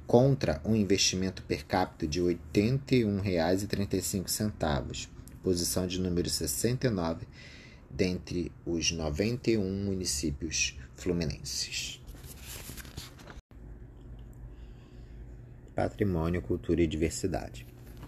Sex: male